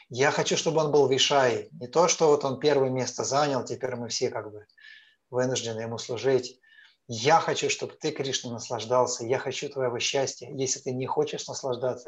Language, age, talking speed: Russian, 30-49, 185 wpm